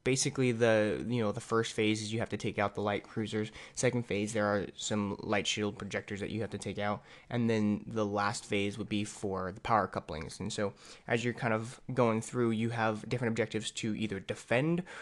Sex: male